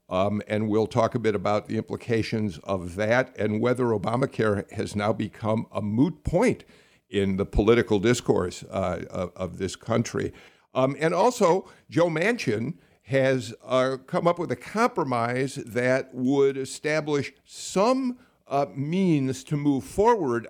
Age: 50-69